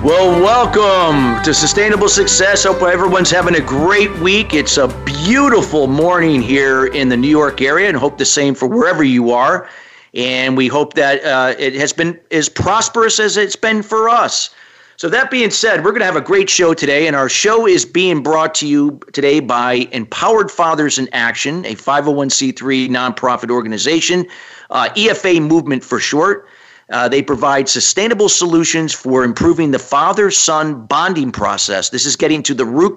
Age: 40-59